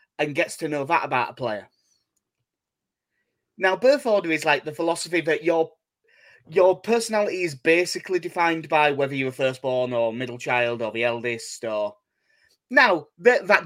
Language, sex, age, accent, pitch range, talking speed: English, male, 20-39, British, 145-240 Hz, 165 wpm